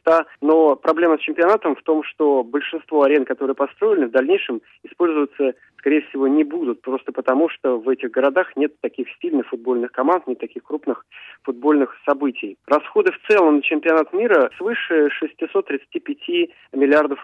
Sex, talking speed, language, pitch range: male, 150 wpm, Russian, 130-165 Hz